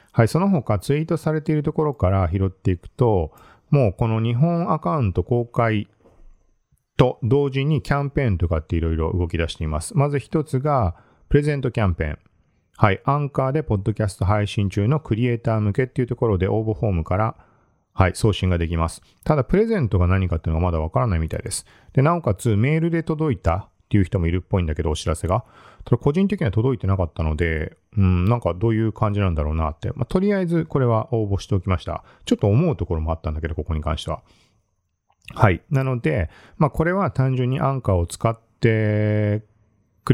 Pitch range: 90-130 Hz